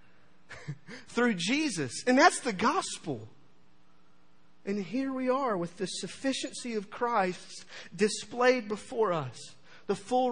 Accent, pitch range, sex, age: American, 150-220 Hz, male, 40-59